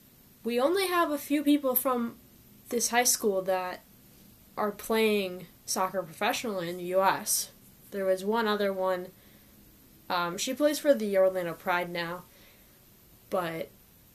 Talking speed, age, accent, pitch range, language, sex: 135 wpm, 10-29, American, 190-265 Hz, English, female